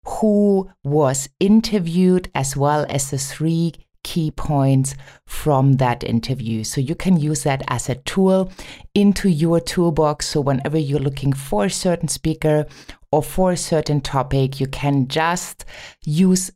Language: English